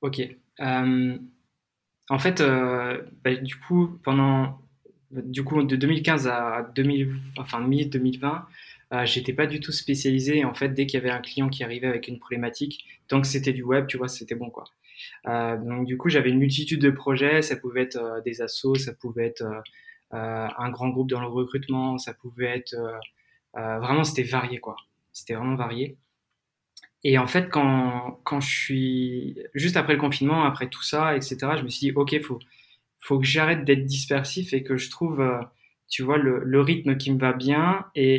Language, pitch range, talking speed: French, 125-145 Hz, 195 wpm